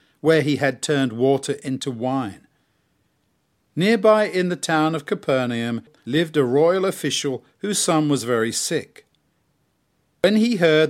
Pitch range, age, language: 130-170 Hz, 50-69, English